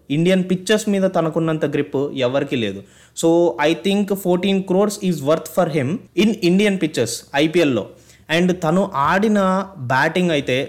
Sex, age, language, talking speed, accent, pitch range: male, 20-39, Telugu, 145 wpm, native, 145-180 Hz